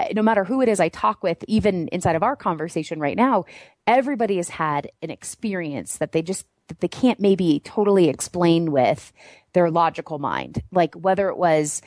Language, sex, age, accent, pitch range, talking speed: English, female, 30-49, American, 165-210 Hz, 180 wpm